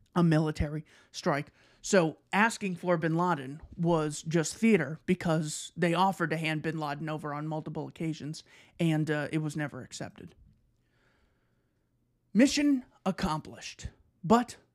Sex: male